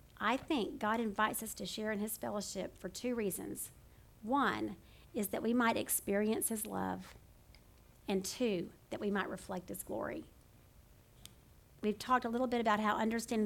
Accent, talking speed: American, 165 wpm